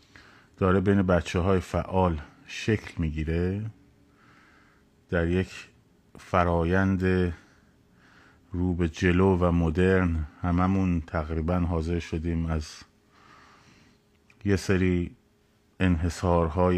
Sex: male